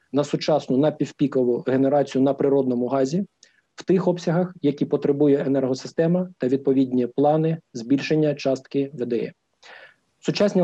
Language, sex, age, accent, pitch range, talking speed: Ukrainian, male, 40-59, native, 130-160 Hz, 115 wpm